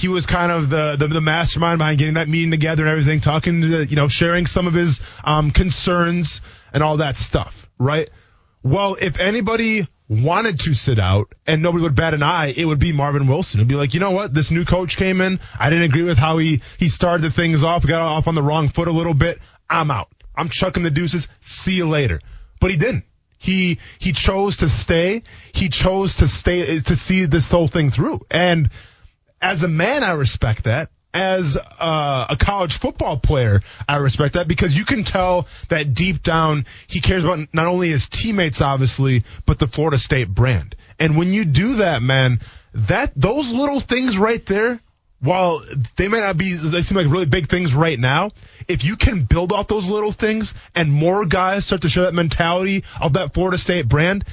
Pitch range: 135-180 Hz